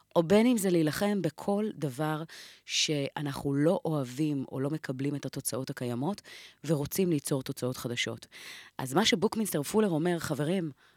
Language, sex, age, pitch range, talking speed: Hebrew, female, 30-49, 140-190 Hz, 140 wpm